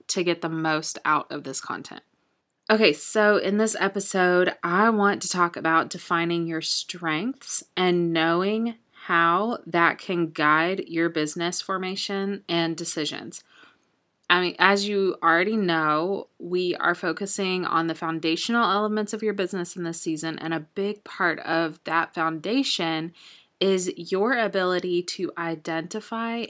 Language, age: English, 20-39